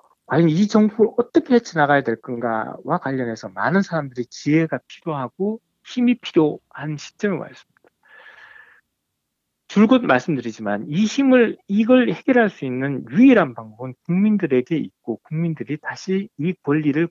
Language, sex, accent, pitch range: Korean, male, native, 125-195 Hz